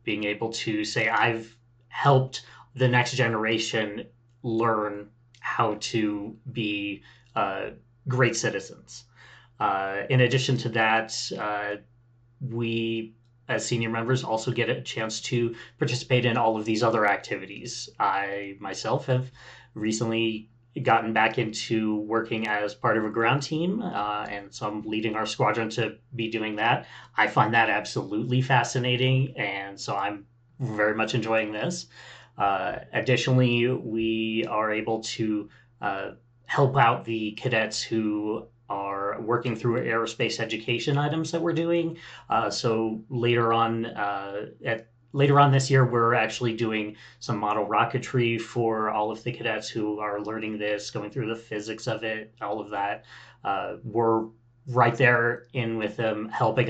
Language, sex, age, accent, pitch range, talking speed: English, male, 20-39, American, 110-125 Hz, 145 wpm